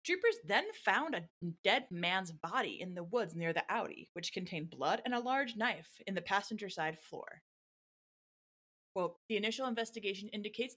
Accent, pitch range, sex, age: American, 170-245 Hz, female, 30-49